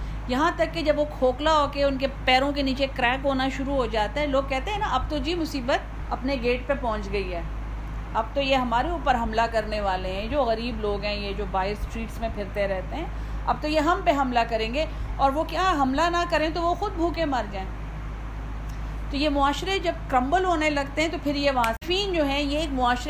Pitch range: 230-295 Hz